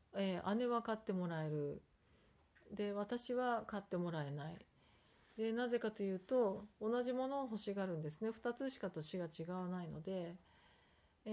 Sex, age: female, 40-59